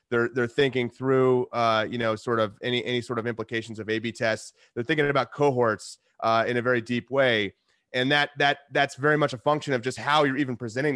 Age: 30-49